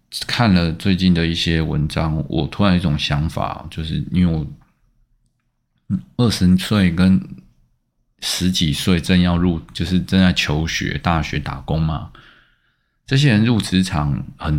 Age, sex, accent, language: 20-39, male, native, Chinese